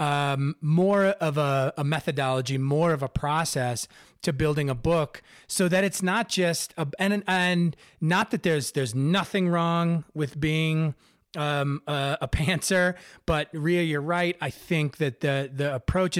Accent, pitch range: American, 145-175 Hz